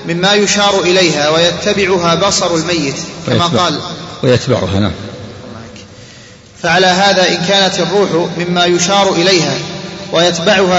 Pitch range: 170-195 Hz